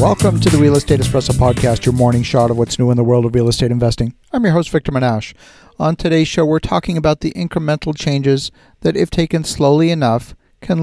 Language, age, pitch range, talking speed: English, 50-69, 130-165 Hz, 220 wpm